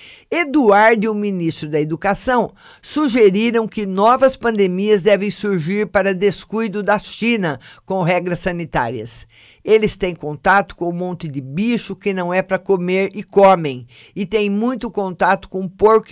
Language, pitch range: Portuguese, 170-205 Hz